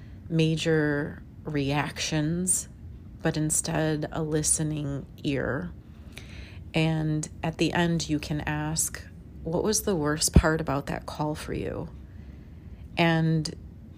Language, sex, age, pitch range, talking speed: English, female, 30-49, 140-160 Hz, 105 wpm